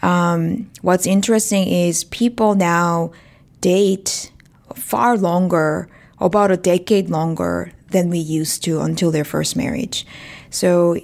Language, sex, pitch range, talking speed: English, female, 165-195 Hz, 120 wpm